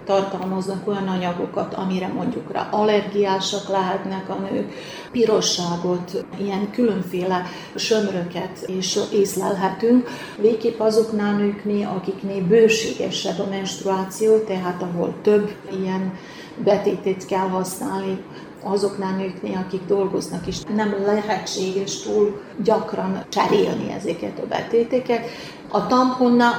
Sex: female